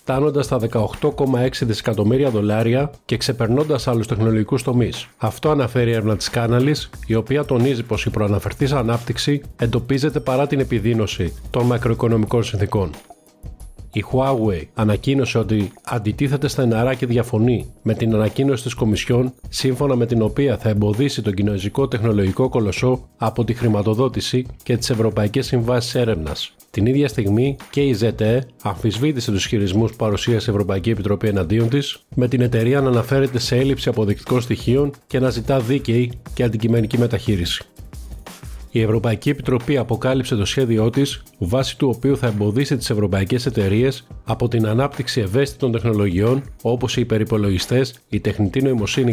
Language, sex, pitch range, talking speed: Greek, male, 110-130 Hz, 145 wpm